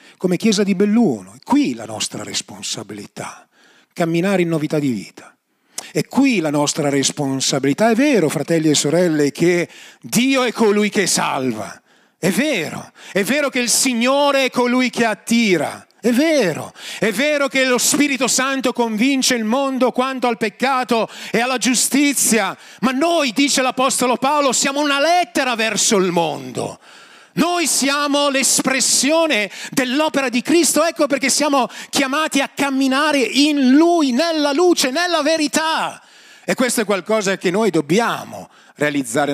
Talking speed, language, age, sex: 145 wpm, Italian, 40-59, male